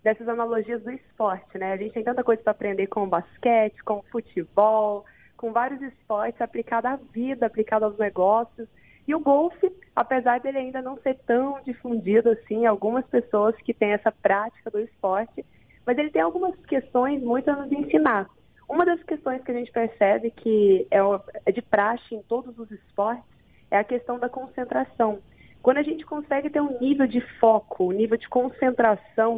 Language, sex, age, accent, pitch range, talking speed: Portuguese, female, 20-39, Brazilian, 210-260 Hz, 175 wpm